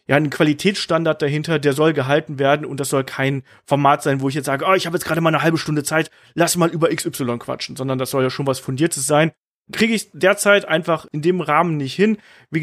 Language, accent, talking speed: German, German, 240 wpm